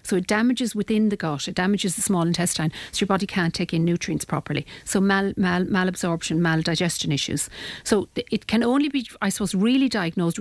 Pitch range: 165-200 Hz